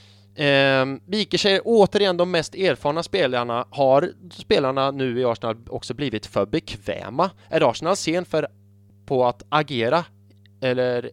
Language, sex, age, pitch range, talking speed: English, male, 20-39, 100-145 Hz, 130 wpm